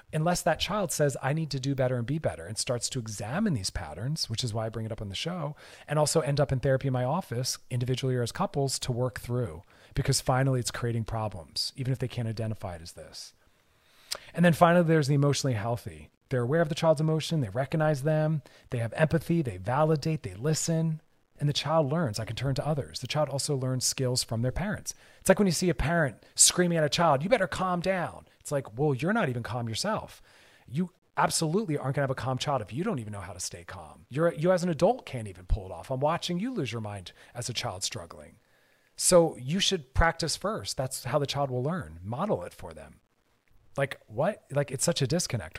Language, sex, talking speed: English, male, 235 wpm